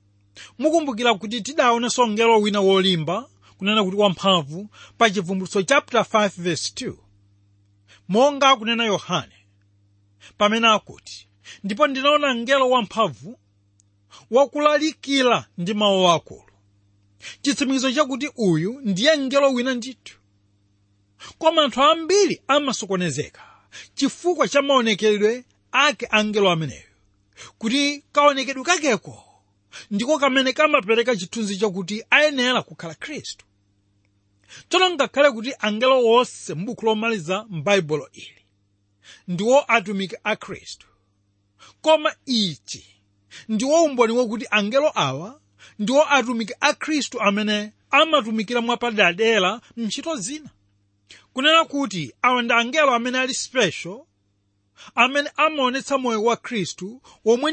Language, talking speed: English, 110 wpm